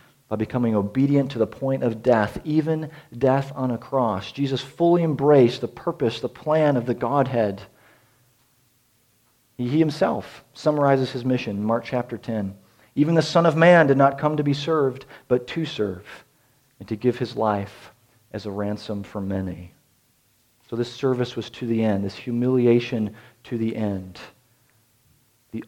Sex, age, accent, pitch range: male, 40-59, American, 115-150 Hz